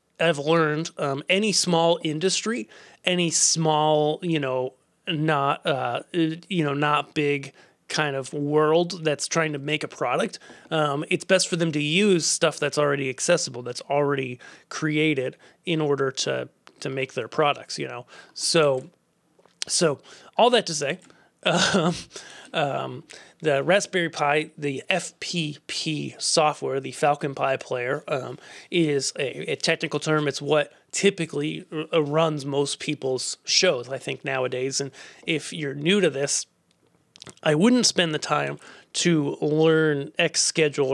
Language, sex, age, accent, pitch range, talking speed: English, male, 30-49, American, 145-170 Hz, 140 wpm